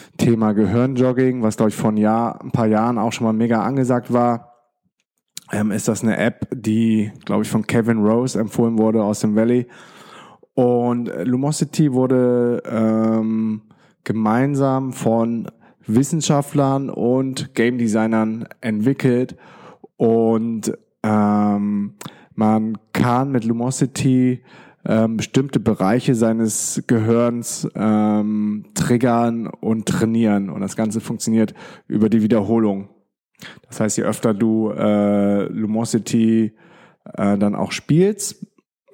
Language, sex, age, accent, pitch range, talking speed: German, male, 20-39, German, 105-125 Hz, 115 wpm